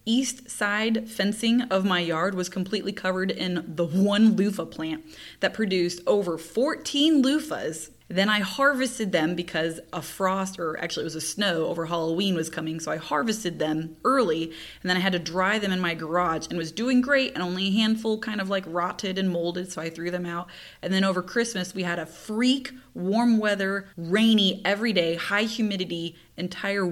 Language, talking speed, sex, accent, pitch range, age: English, 190 wpm, female, American, 170-210 Hz, 20-39